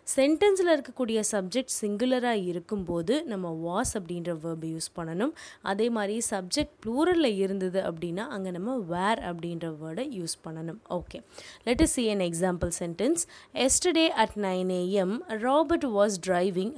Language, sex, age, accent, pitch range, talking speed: Tamil, female, 20-39, native, 180-250 Hz, 130 wpm